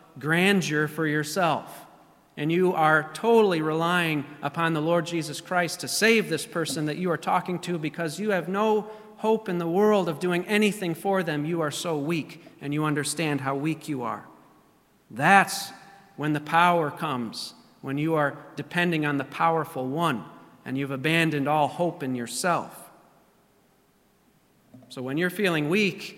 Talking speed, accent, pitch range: 165 wpm, American, 150-195 Hz